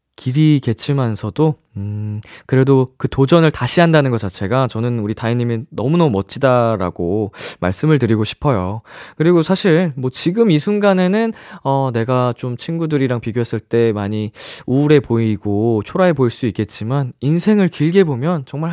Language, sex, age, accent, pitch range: Korean, male, 20-39, native, 115-170 Hz